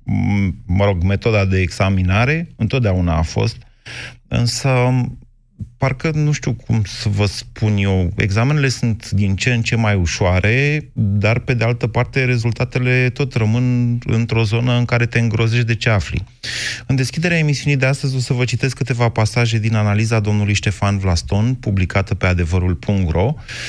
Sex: male